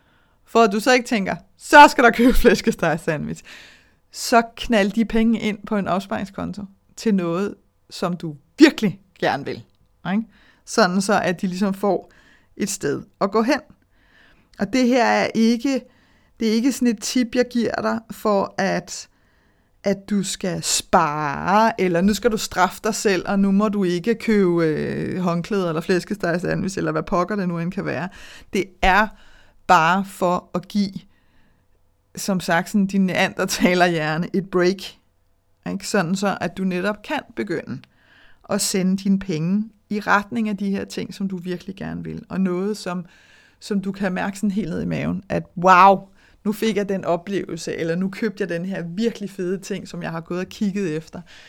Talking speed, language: 175 wpm, Danish